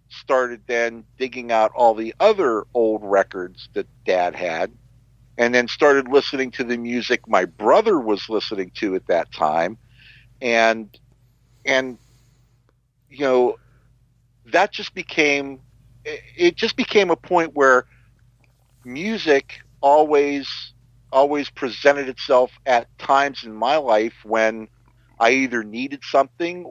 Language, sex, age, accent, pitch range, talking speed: English, male, 50-69, American, 120-135 Hz, 125 wpm